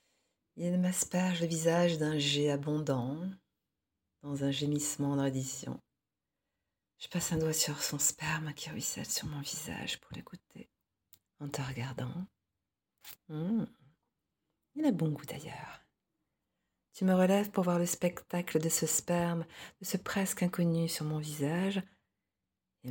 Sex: female